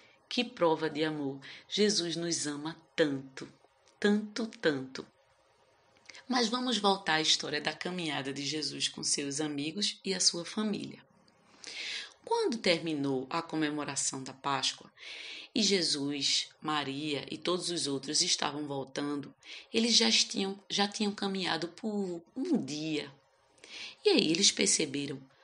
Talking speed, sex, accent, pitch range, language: 125 wpm, female, Brazilian, 145-220 Hz, Portuguese